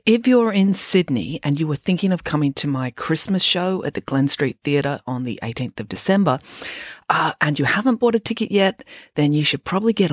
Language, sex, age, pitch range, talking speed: English, female, 40-59, 125-170 Hz, 220 wpm